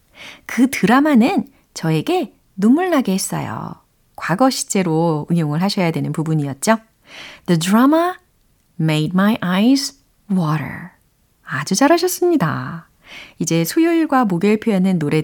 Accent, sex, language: native, female, Korean